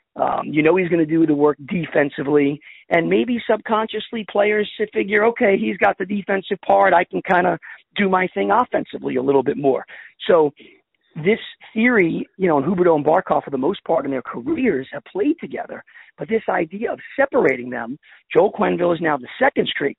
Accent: American